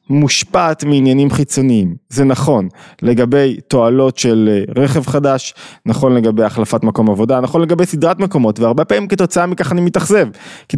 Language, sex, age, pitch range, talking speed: Hebrew, male, 20-39, 115-165 Hz, 145 wpm